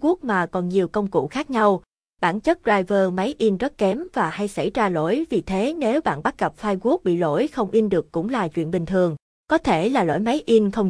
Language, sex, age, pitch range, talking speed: Vietnamese, female, 20-39, 175-230 Hz, 235 wpm